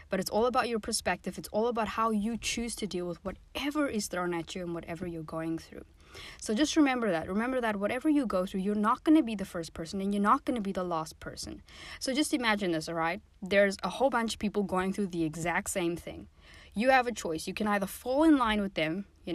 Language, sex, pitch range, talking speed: English, female, 175-230 Hz, 255 wpm